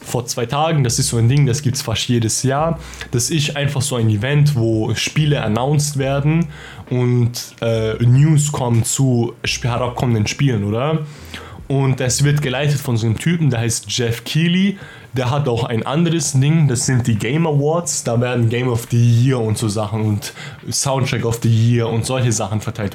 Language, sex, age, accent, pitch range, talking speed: German, male, 20-39, German, 115-155 Hz, 190 wpm